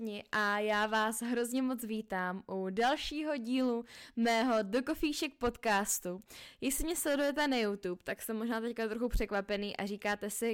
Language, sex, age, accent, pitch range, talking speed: Czech, female, 10-29, native, 200-230 Hz, 150 wpm